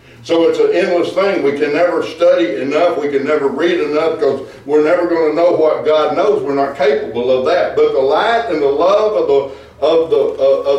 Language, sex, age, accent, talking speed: English, male, 60-79, American, 220 wpm